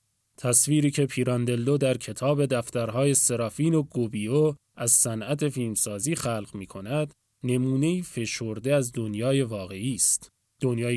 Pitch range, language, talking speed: 115-145 Hz, Persian, 120 wpm